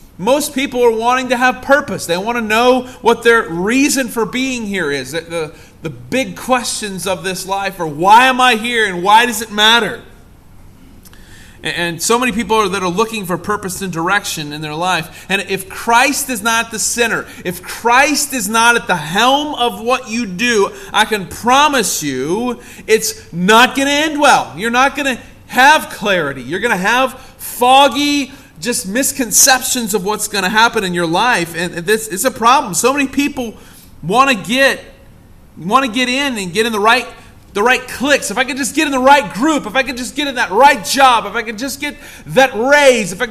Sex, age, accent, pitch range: male, 30-49, American, 175-255 Hz